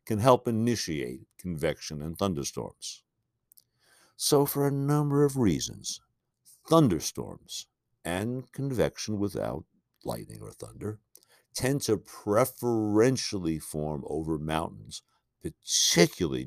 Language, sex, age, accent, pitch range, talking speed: English, male, 60-79, American, 80-120 Hz, 95 wpm